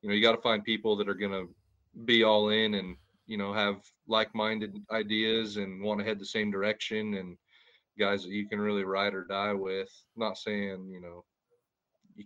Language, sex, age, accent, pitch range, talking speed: English, male, 30-49, American, 95-110 Hz, 210 wpm